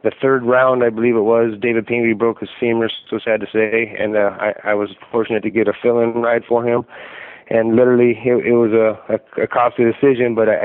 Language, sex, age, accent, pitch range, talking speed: English, male, 20-39, American, 100-115 Hz, 225 wpm